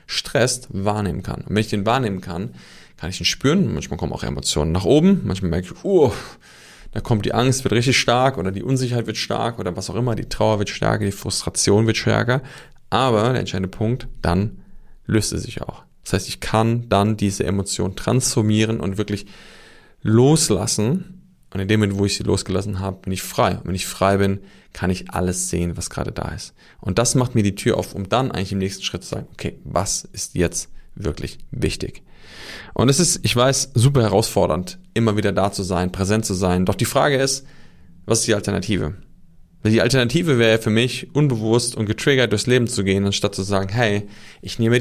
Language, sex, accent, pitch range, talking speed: German, male, German, 95-120 Hz, 210 wpm